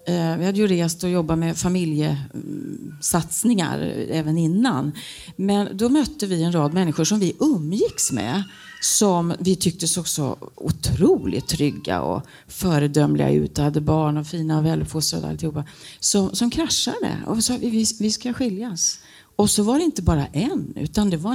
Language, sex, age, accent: Swedish, female, 40-59, native